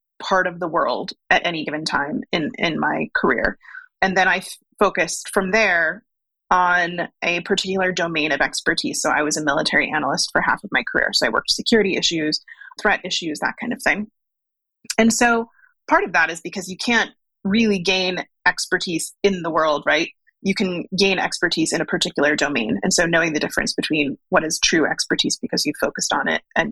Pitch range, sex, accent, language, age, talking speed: 170-210 Hz, female, American, English, 30-49, 195 wpm